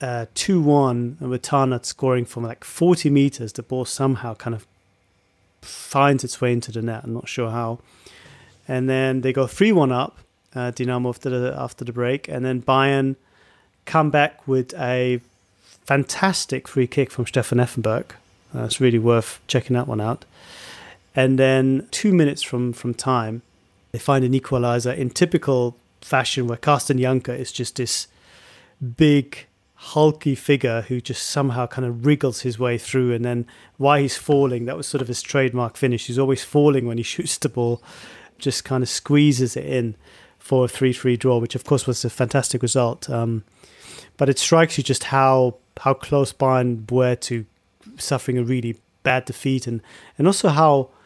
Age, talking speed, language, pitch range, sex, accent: 30-49, 175 wpm, English, 120-140 Hz, male, British